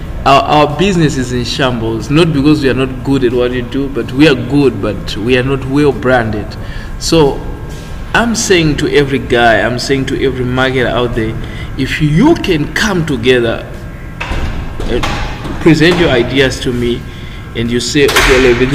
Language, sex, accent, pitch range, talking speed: English, male, South African, 120-150 Hz, 175 wpm